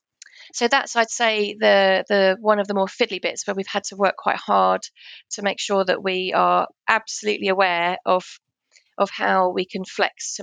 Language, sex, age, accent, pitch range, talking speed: English, female, 30-49, British, 190-235 Hz, 195 wpm